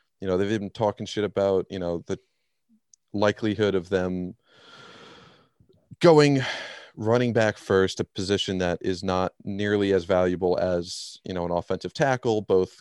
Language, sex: English, male